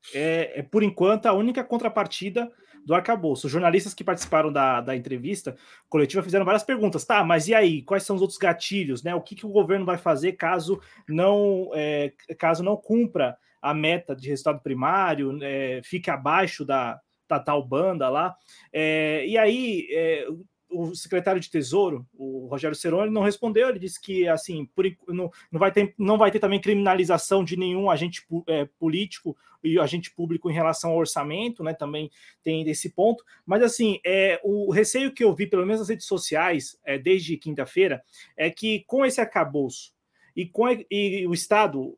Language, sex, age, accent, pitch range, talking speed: Portuguese, male, 20-39, Brazilian, 160-210 Hz, 170 wpm